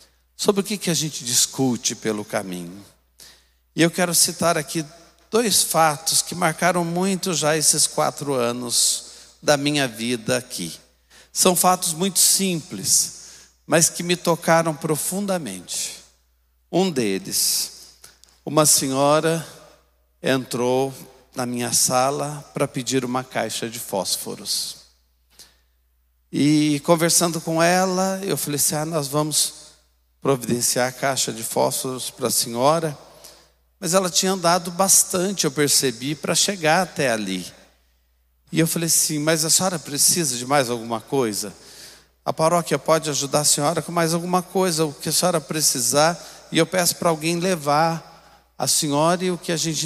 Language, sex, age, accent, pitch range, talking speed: Portuguese, male, 50-69, Brazilian, 125-170 Hz, 145 wpm